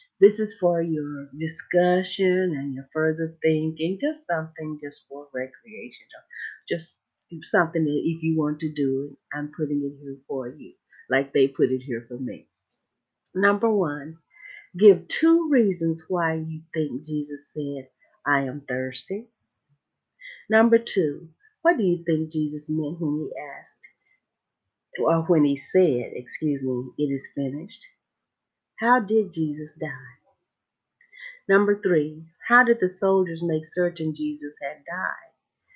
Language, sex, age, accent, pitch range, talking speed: English, female, 40-59, American, 145-195 Hz, 140 wpm